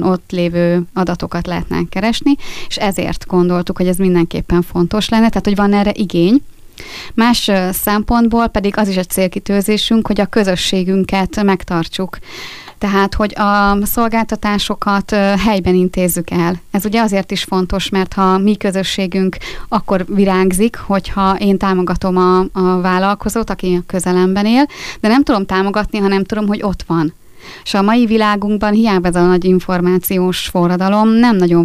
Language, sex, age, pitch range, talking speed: Hungarian, female, 20-39, 180-205 Hz, 150 wpm